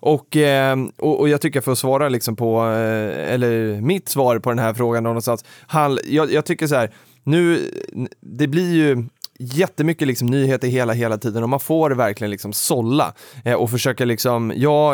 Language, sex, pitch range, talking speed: Swedish, male, 110-145 Hz, 175 wpm